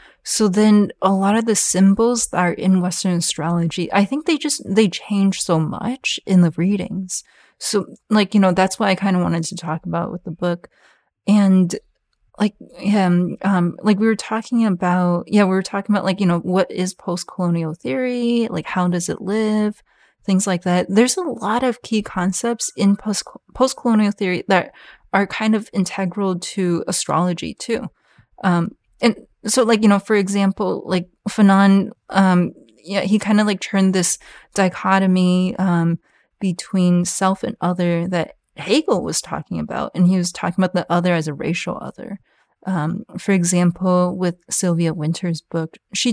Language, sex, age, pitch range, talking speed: English, female, 20-39, 180-210 Hz, 180 wpm